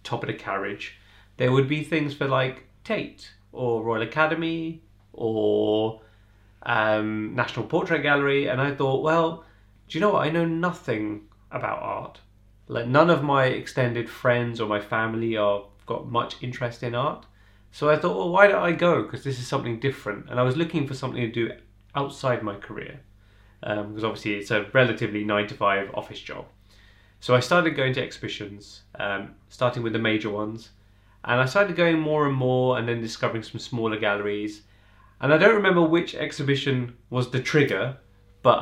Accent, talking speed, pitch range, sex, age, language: British, 180 wpm, 105-135 Hz, male, 30-49, English